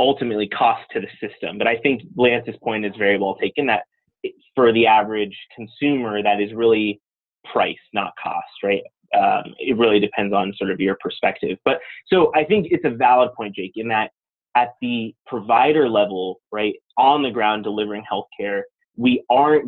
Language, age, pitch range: English, 30-49, 105-140 Hz